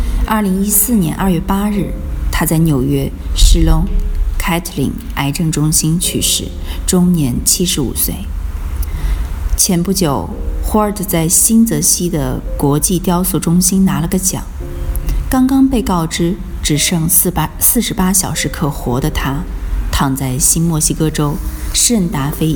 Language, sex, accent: Chinese, female, native